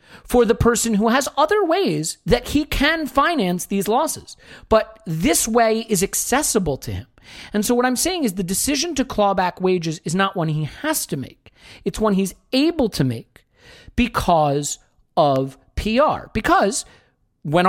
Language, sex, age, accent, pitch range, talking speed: English, male, 40-59, American, 155-235 Hz, 170 wpm